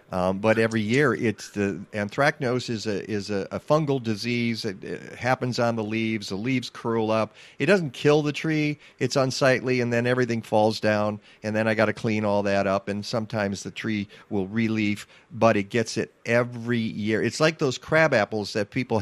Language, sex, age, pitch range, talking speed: English, male, 50-69, 110-140 Hz, 200 wpm